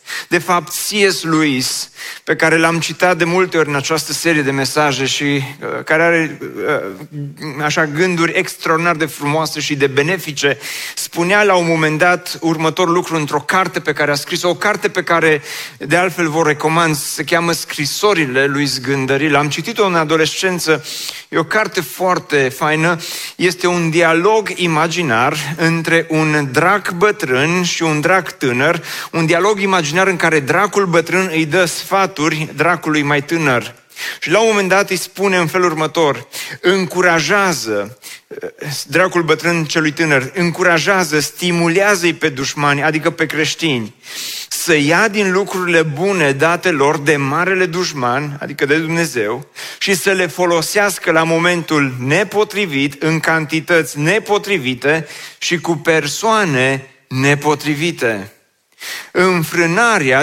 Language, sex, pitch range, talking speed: Romanian, male, 150-185 Hz, 140 wpm